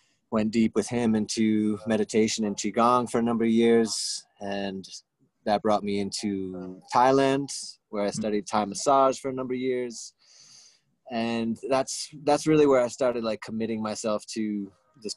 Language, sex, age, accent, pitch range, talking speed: English, male, 20-39, American, 100-115 Hz, 160 wpm